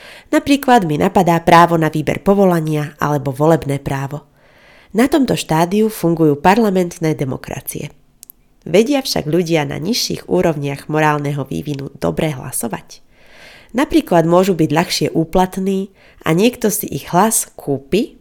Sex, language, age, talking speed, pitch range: female, Slovak, 30-49, 120 wpm, 145-205 Hz